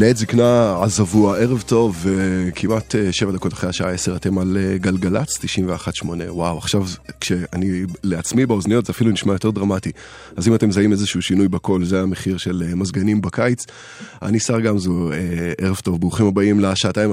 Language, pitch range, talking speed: Hebrew, 90-110 Hz, 160 wpm